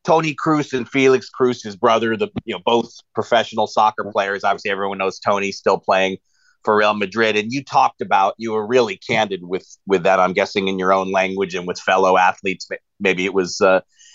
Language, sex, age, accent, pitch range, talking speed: English, male, 30-49, American, 105-130 Hz, 205 wpm